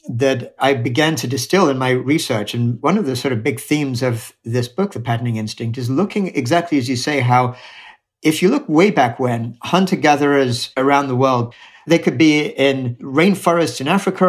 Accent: British